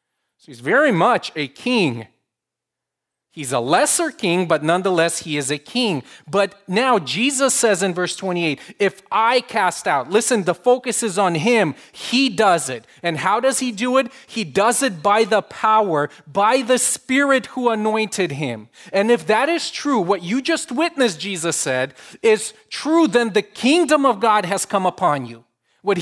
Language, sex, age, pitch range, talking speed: English, male, 30-49, 165-225 Hz, 180 wpm